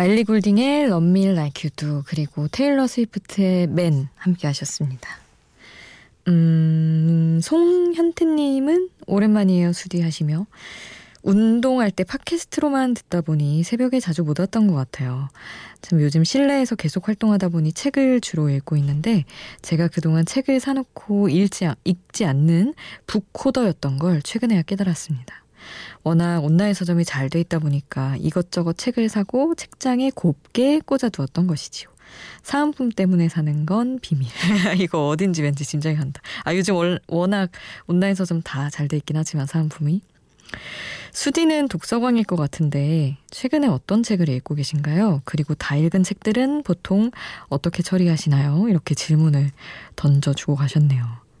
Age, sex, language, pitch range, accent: 20-39, female, Korean, 150-220 Hz, native